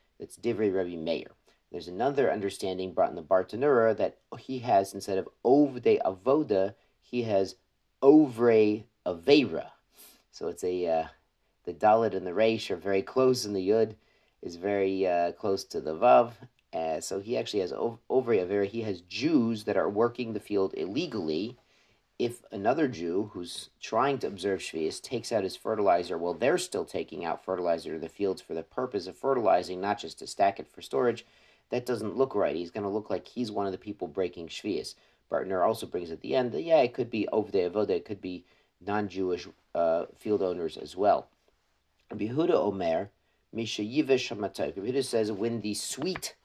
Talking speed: 185 wpm